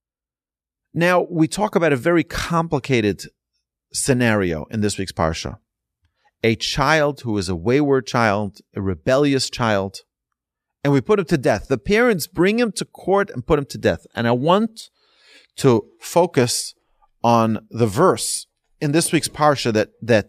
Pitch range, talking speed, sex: 110-165 Hz, 155 wpm, male